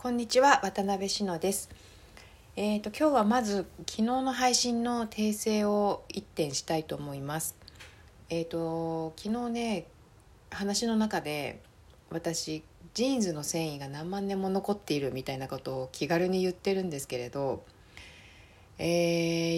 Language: Japanese